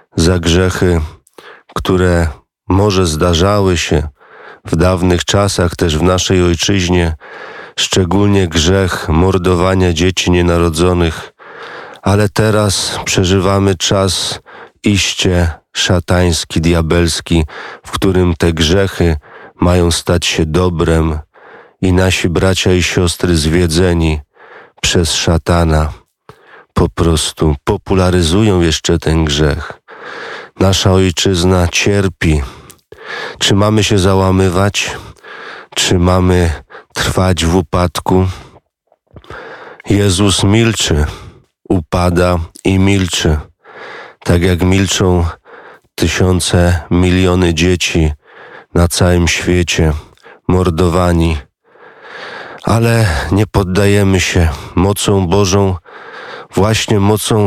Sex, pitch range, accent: male, 85-95 Hz, native